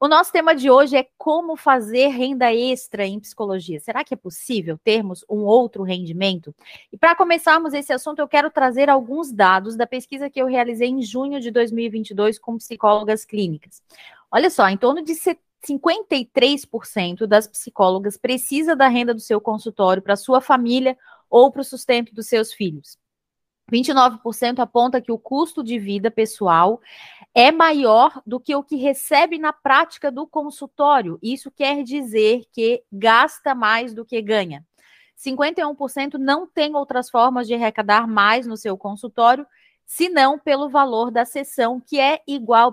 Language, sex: Portuguese, female